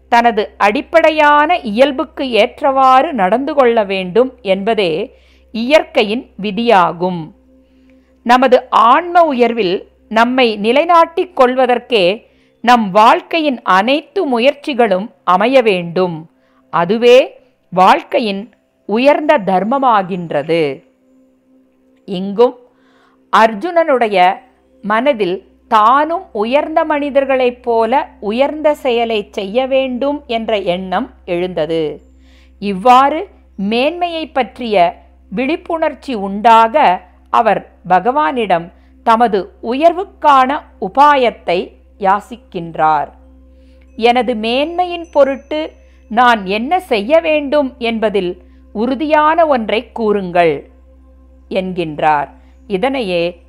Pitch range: 185-280 Hz